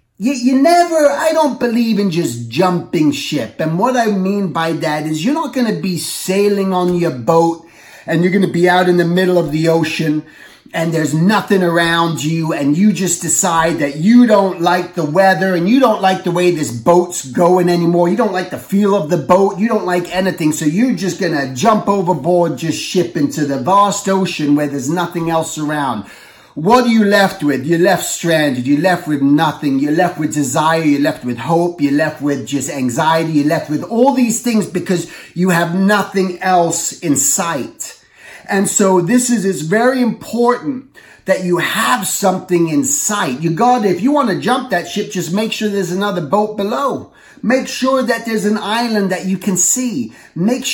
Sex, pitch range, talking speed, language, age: male, 165-215 Hz, 200 wpm, English, 30-49